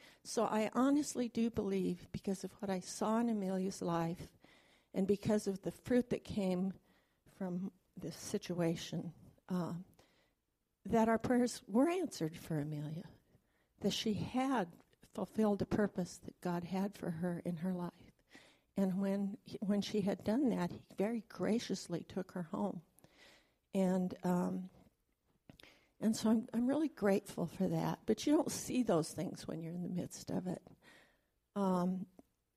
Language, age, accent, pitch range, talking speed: English, 60-79, American, 180-210 Hz, 150 wpm